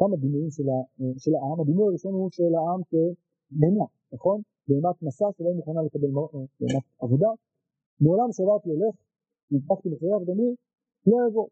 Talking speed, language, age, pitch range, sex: 145 wpm, Hebrew, 50-69, 160-210 Hz, male